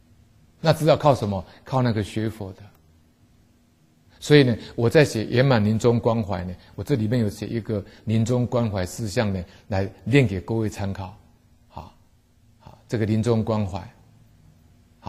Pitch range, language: 105-135 Hz, Chinese